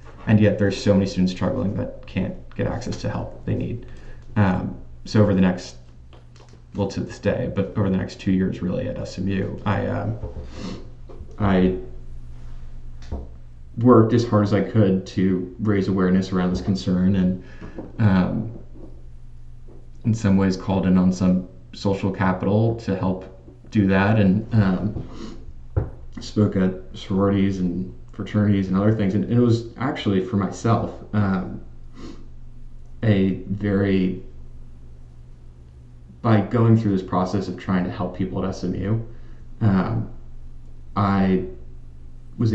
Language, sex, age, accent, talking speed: English, male, 20-39, American, 135 wpm